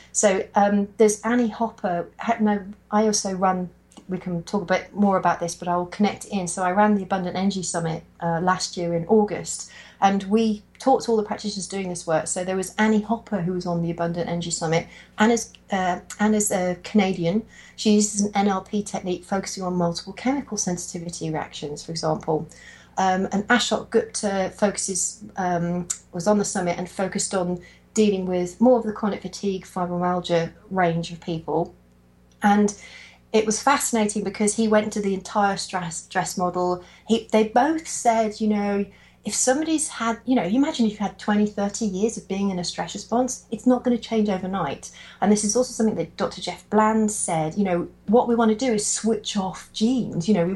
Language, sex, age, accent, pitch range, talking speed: English, female, 40-59, British, 180-215 Hz, 195 wpm